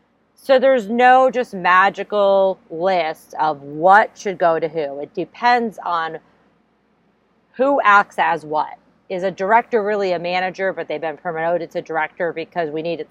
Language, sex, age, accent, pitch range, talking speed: English, female, 40-59, American, 165-240 Hz, 155 wpm